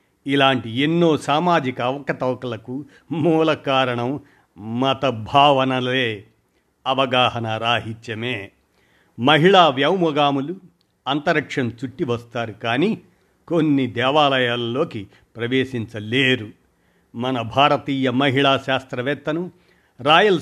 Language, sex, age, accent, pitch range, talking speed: Telugu, male, 50-69, native, 120-150 Hz, 70 wpm